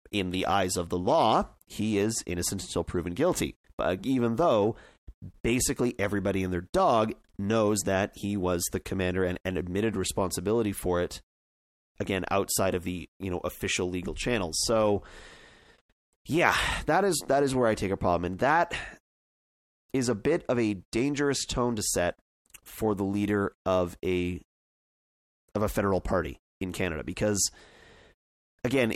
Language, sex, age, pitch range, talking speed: English, male, 30-49, 90-120 Hz, 160 wpm